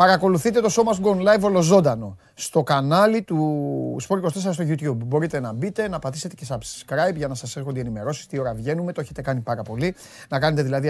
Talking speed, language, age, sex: 195 wpm, Greek, 30-49, male